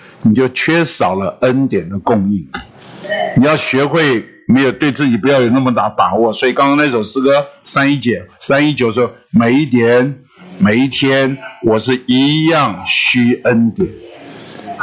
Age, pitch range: 50-69, 130-180 Hz